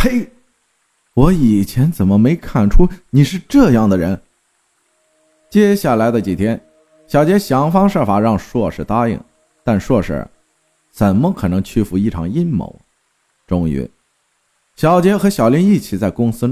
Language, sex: Chinese, male